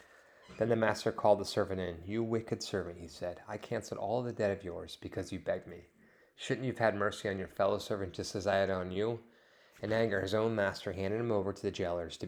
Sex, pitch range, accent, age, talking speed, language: male, 95-115 Hz, American, 30-49, 245 wpm, English